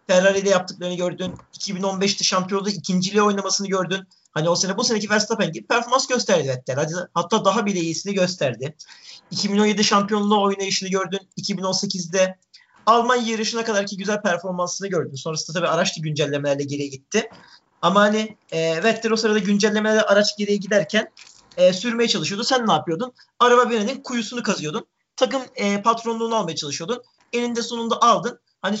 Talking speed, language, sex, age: 140 wpm, Turkish, male, 40-59